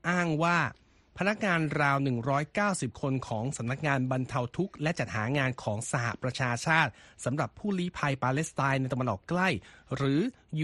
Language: Thai